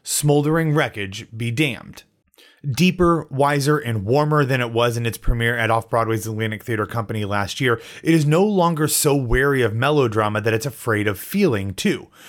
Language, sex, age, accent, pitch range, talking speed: English, male, 30-49, American, 115-155 Hz, 170 wpm